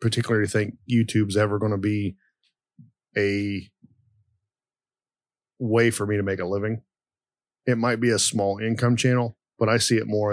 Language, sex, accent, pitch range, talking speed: English, male, American, 95-115 Hz, 155 wpm